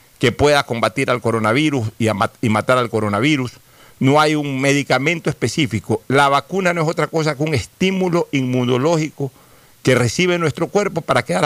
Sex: male